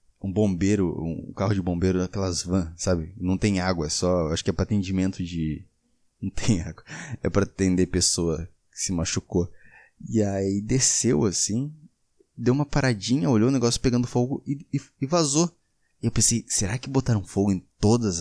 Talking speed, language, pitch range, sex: 180 wpm, Portuguese, 90-125 Hz, male